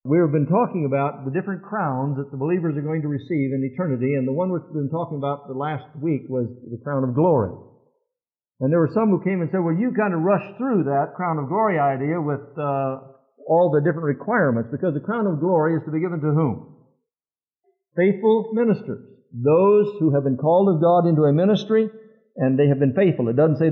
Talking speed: 220 wpm